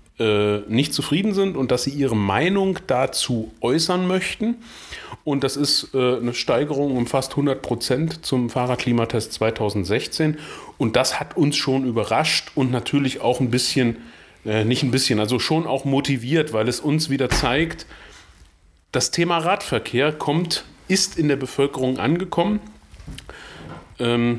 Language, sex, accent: German, male, German